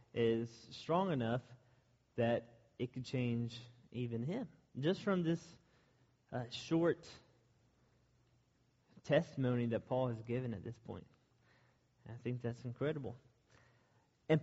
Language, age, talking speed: English, 30-49, 110 wpm